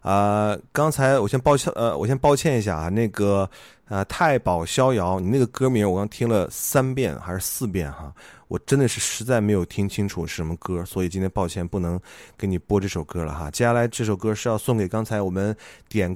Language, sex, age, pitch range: Chinese, male, 20-39, 90-115 Hz